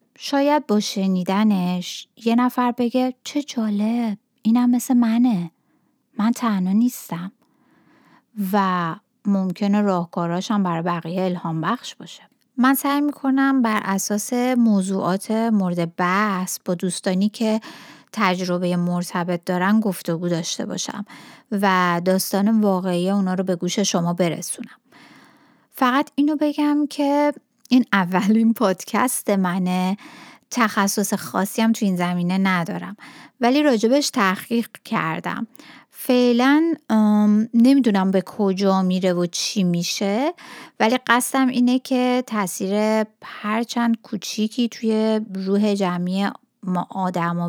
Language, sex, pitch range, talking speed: Persian, female, 185-245 Hz, 110 wpm